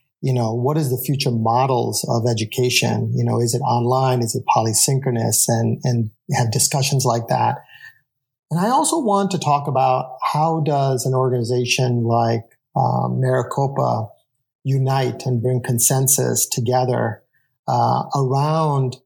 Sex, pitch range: male, 120-135 Hz